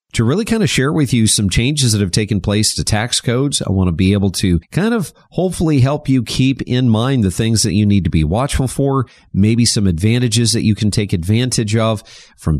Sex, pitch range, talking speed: male, 100-125 Hz, 235 wpm